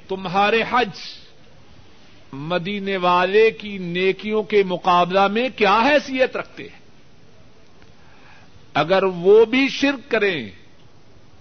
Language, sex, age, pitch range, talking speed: Urdu, male, 50-69, 165-220 Hz, 95 wpm